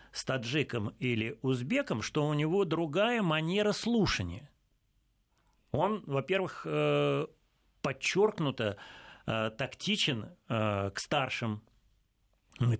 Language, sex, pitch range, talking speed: Russian, male, 115-175 Hz, 80 wpm